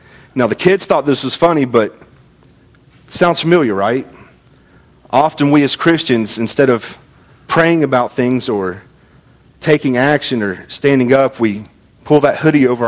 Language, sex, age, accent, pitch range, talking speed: English, male, 40-59, American, 115-145 Hz, 150 wpm